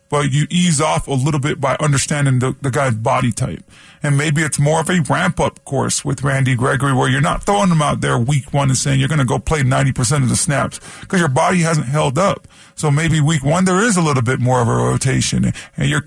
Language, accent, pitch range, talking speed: English, American, 135-165 Hz, 245 wpm